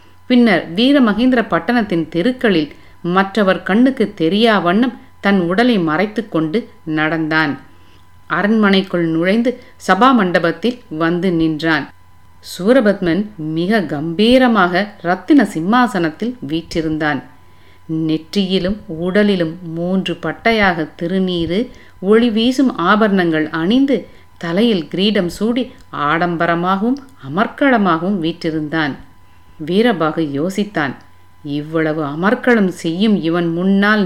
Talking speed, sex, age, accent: 80 wpm, female, 50-69, native